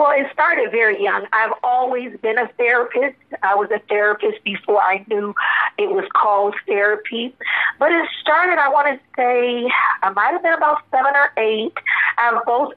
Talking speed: 185 wpm